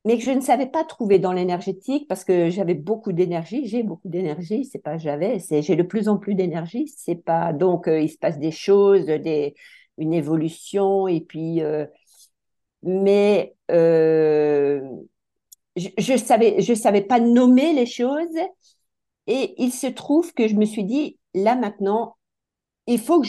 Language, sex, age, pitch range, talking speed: French, female, 50-69, 170-245 Hz, 175 wpm